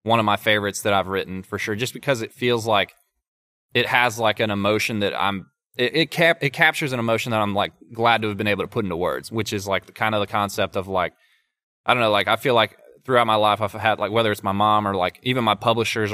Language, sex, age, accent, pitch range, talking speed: English, male, 20-39, American, 105-125 Hz, 270 wpm